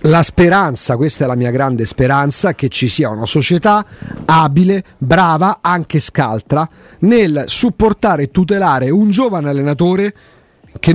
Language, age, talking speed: Italian, 40-59, 135 wpm